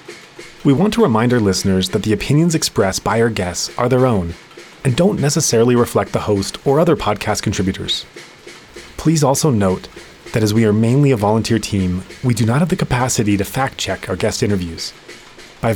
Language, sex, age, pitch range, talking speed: English, male, 30-49, 100-130 Hz, 185 wpm